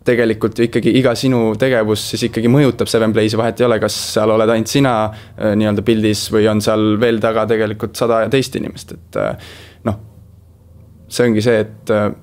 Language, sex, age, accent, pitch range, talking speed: English, male, 20-39, Finnish, 105-120 Hz, 170 wpm